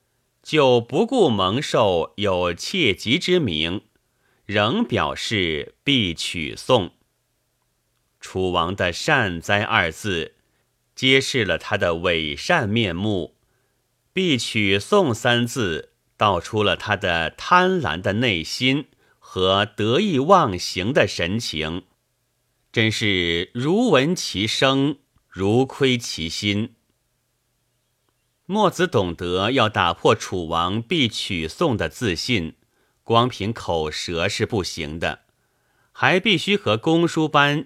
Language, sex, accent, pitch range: Chinese, male, native, 100-140 Hz